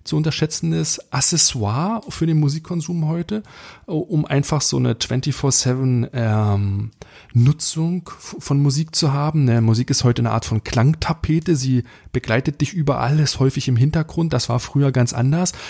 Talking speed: 140 wpm